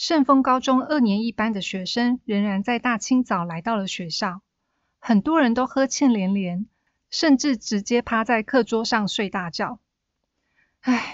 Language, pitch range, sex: Chinese, 200-260 Hz, female